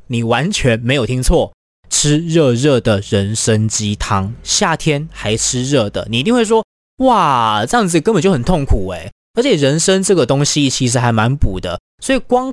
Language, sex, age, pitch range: Chinese, male, 20-39, 120-190 Hz